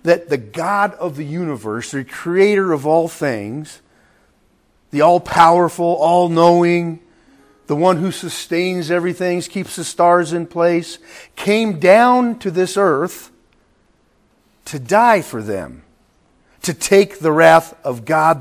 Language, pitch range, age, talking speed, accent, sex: English, 155-195 Hz, 50-69, 125 wpm, American, male